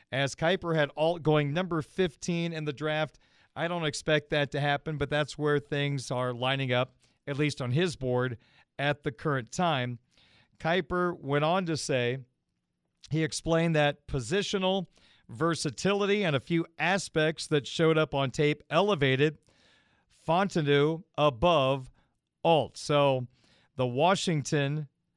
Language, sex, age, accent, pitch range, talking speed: English, male, 40-59, American, 140-170 Hz, 140 wpm